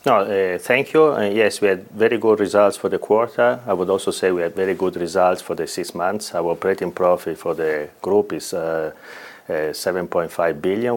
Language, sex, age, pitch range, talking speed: English, male, 30-49, 85-110 Hz, 210 wpm